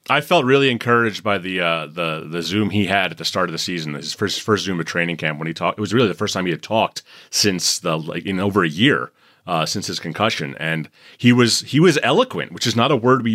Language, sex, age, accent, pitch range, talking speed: English, male, 30-49, American, 95-130 Hz, 270 wpm